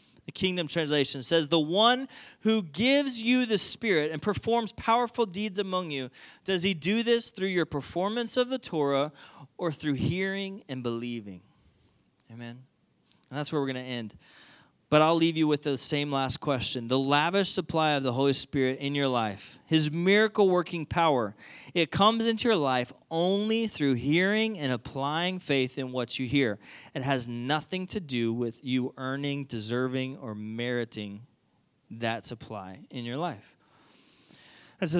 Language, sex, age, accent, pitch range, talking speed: English, male, 30-49, American, 120-160 Hz, 165 wpm